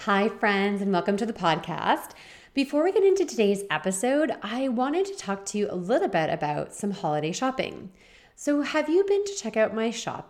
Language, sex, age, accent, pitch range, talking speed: English, female, 30-49, American, 180-235 Hz, 205 wpm